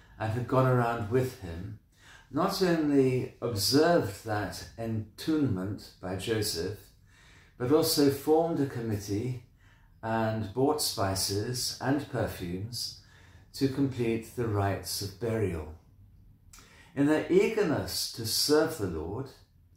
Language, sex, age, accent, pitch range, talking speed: English, male, 50-69, British, 100-130 Hz, 110 wpm